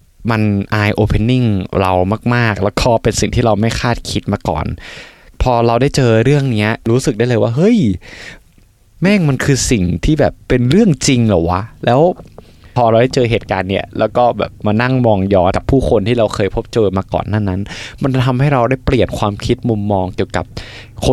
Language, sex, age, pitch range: Thai, male, 20-39, 95-120 Hz